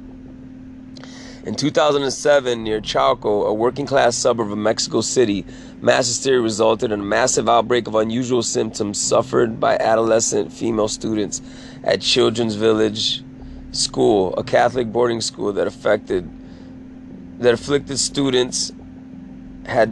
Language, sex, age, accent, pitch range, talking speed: English, male, 30-49, American, 110-130 Hz, 120 wpm